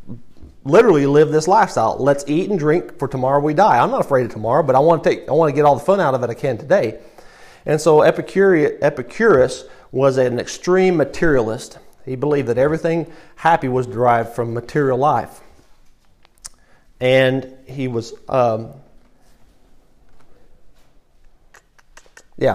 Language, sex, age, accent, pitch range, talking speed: English, male, 40-59, American, 125-160 Hz, 155 wpm